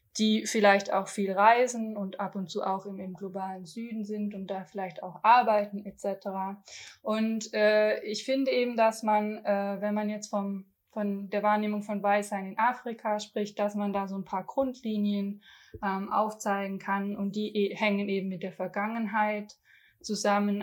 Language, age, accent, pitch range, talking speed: German, 20-39, German, 190-210 Hz, 170 wpm